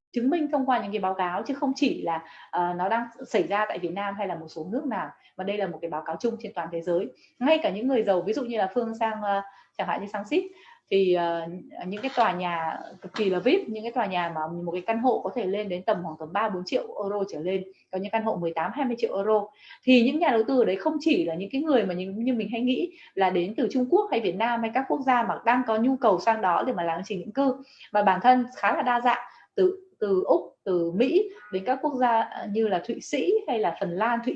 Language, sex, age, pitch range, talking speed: Vietnamese, female, 20-39, 185-255 Hz, 285 wpm